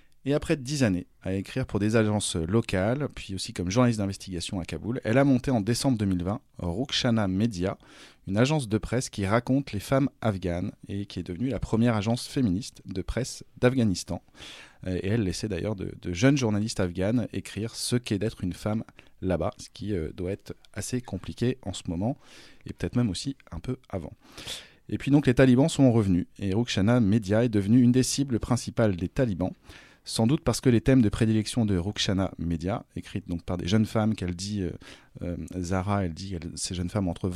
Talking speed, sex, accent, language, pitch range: 200 wpm, male, French, French, 95-120 Hz